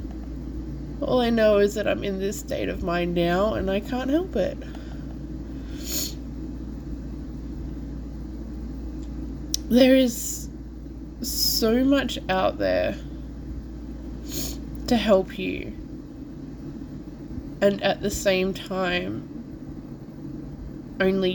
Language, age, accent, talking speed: English, 20-39, Australian, 90 wpm